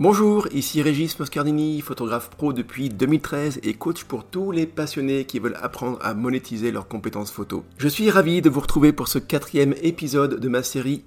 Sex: male